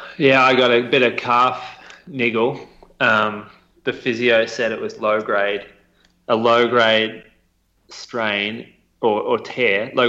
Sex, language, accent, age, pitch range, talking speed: male, English, Australian, 20-39, 95-115 Hz, 145 wpm